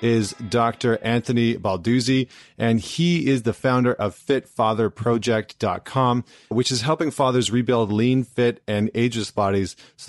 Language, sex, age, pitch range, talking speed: English, male, 30-49, 105-125 Hz, 130 wpm